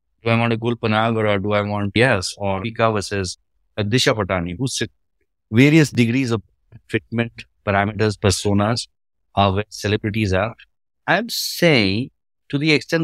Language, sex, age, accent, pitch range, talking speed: English, male, 50-69, Indian, 105-145 Hz, 150 wpm